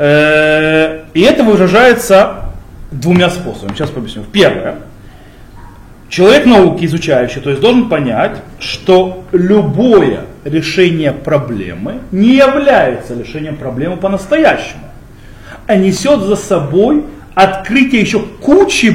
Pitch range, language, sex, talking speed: 140-220 Hz, Russian, male, 100 wpm